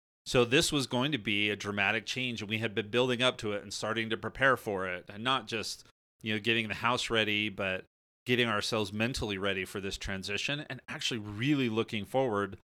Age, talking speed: 30-49, 210 wpm